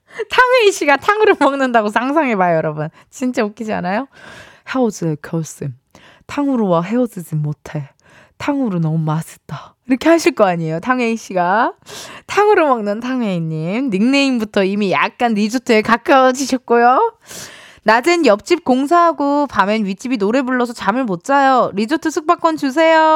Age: 20-39